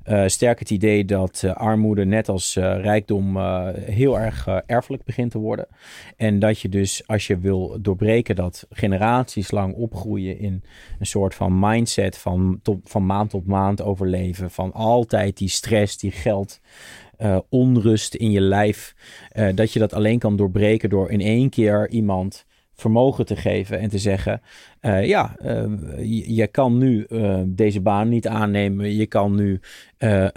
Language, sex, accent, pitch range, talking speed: Dutch, male, Dutch, 100-115 Hz, 170 wpm